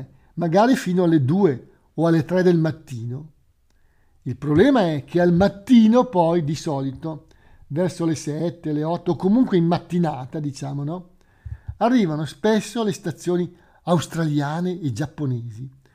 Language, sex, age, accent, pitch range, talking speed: Italian, male, 50-69, native, 135-180 Hz, 135 wpm